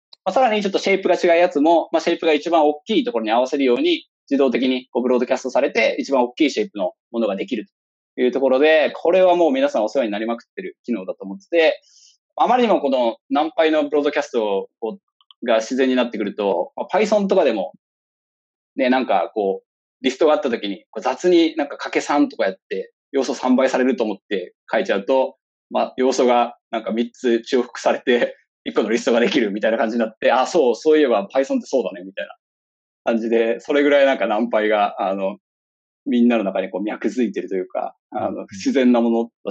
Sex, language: male, Japanese